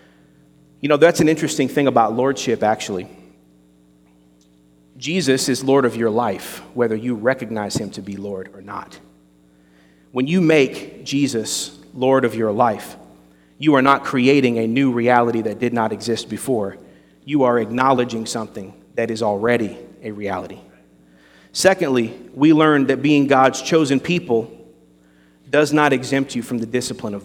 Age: 40-59